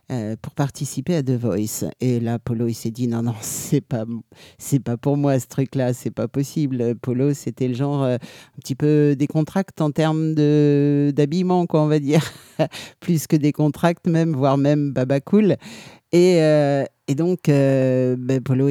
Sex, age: male, 50-69